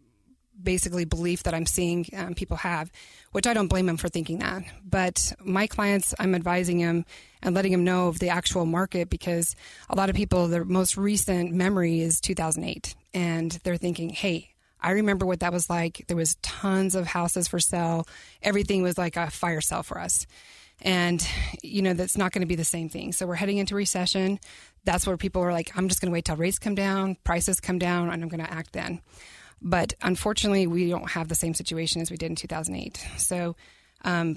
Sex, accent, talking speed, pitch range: female, American, 205 wpm, 170-190 Hz